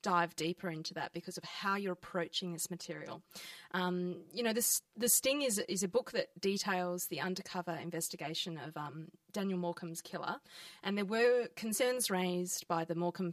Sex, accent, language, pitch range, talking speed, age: female, Australian, English, 175-205 Hz, 175 wpm, 20-39